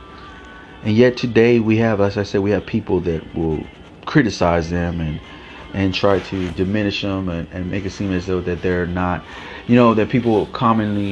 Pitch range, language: 90-110 Hz, English